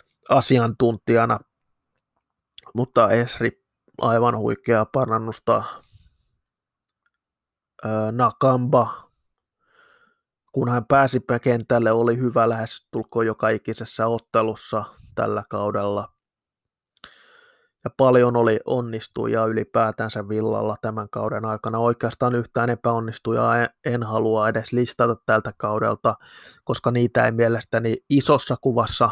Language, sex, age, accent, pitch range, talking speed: Finnish, male, 20-39, native, 110-125 Hz, 90 wpm